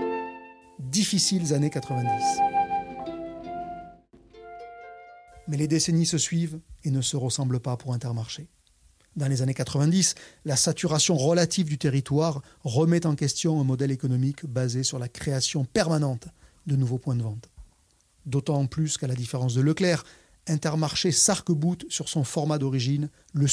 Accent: French